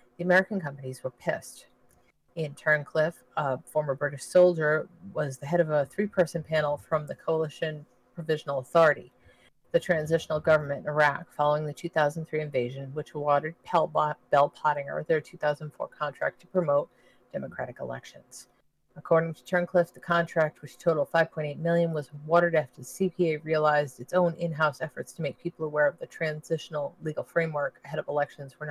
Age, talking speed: 40-59, 155 wpm